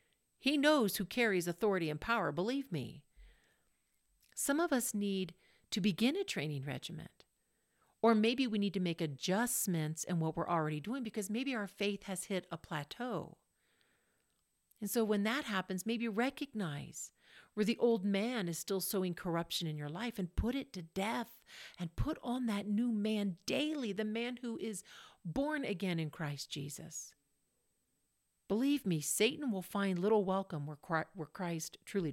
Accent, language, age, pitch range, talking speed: American, English, 50-69, 170-220 Hz, 165 wpm